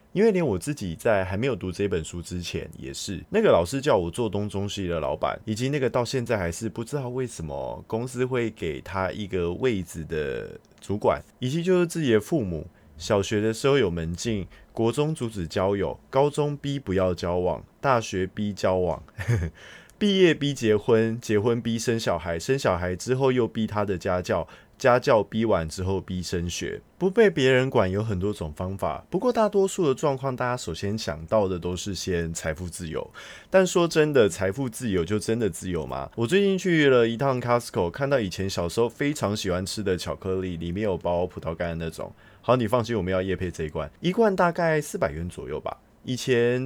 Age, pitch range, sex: 20-39, 90-130 Hz, male